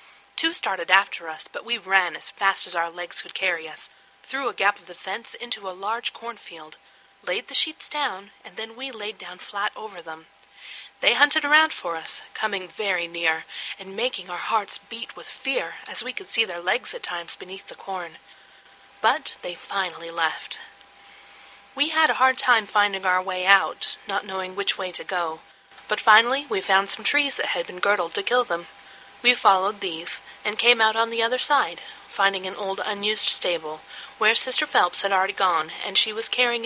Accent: American